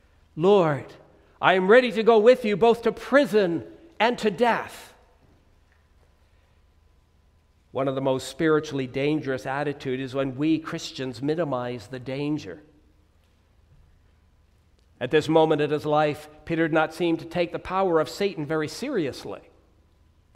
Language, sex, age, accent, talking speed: English, male, 60-79, American, 135 wpm